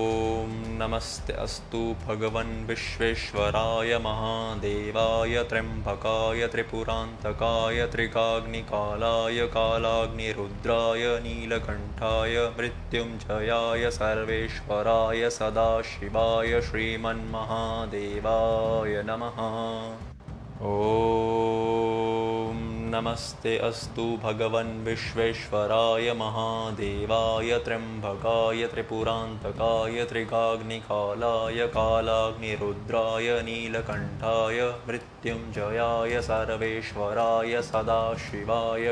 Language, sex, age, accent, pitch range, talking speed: Hindi, male, 20-39, native, 110-115 Hz, 35 wpm